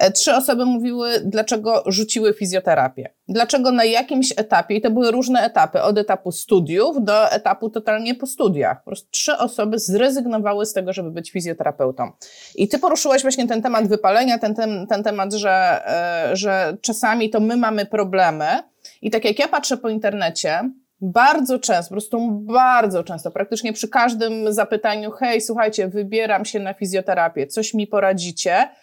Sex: female